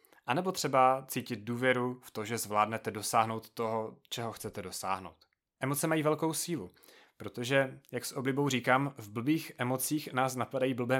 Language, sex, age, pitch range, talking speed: Czech, male, 30-49, 100-130 Hz, 160 wpm